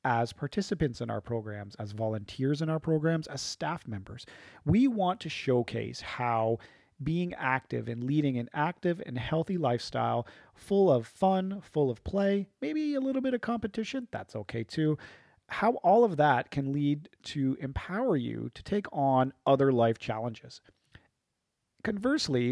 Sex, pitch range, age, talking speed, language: male, 120-155 Hz, 40-59, 155 wpm, English